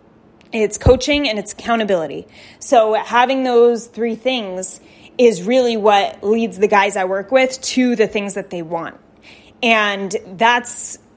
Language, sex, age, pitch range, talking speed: English, female, 20-39, 205-255 Hz, 145 wpm